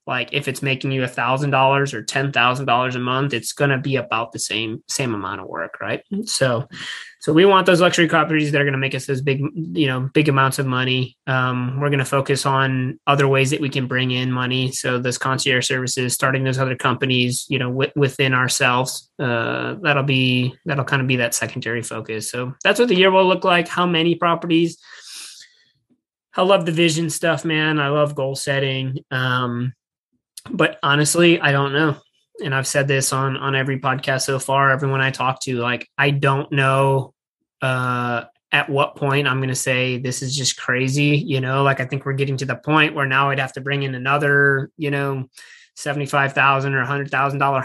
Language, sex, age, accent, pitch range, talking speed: English, male, 20-39, American, 130-145 Hz, 205 wpm